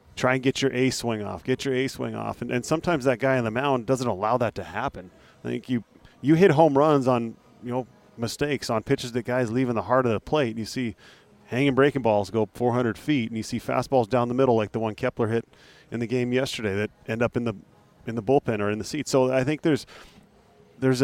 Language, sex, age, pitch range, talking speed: English, male, 30-49, 115-135 Hz, 255 wpm